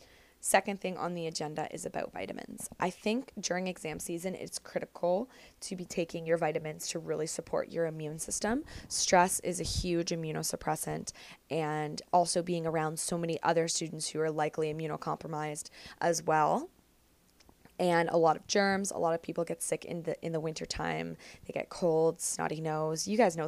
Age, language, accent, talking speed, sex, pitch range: 20-39, English, American, 175 wpm, female, 155-175 Hz